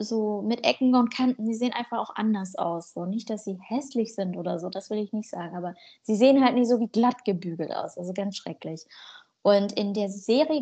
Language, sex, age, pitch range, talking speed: German, female, 20-39, 195-240 Hz, 230 wpm